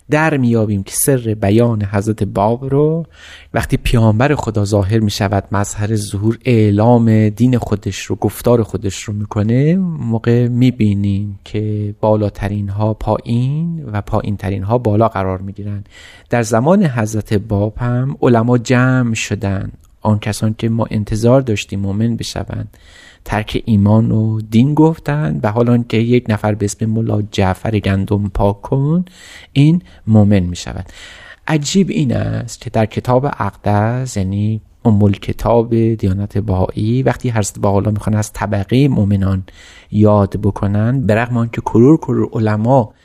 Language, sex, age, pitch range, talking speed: Persian, male, 30-49, 105-125 Hz, 135 wpm